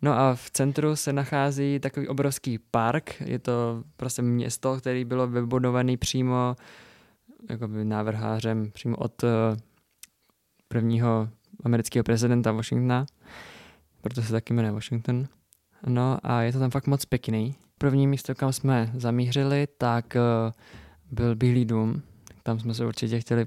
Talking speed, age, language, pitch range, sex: 130 wpm, 20-39, Czech, 115-130 Hz, male